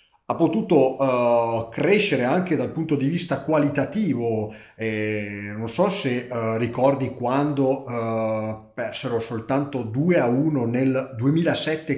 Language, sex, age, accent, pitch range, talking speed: Italian, male, 40-59, native, 120-150 Hz, 125 wpm